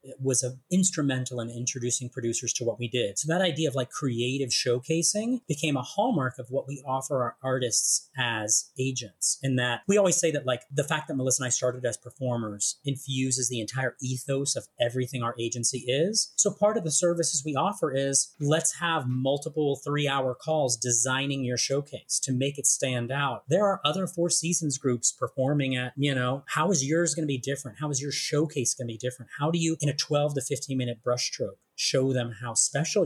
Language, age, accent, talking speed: English, 30-49, American, 205 wpm